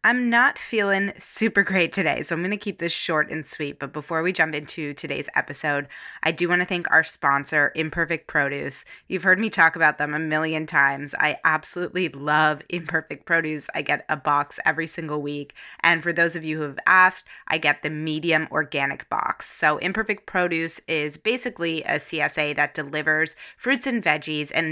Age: 20-39